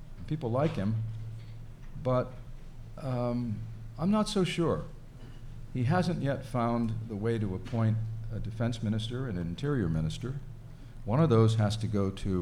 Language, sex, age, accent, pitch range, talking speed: English, male, 50-69, American, 100-125 Hz, 150 wpm